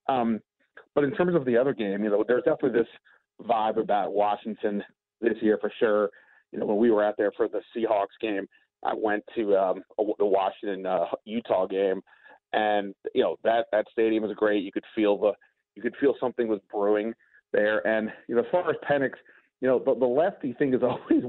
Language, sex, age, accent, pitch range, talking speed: English, male, 40-59, American, 105-125 Hz, 210 wpm